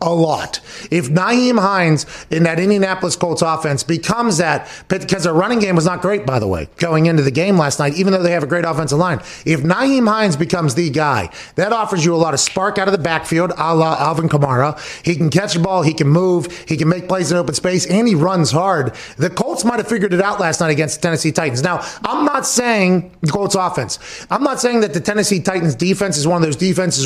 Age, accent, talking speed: 30-49, American, 240 wpm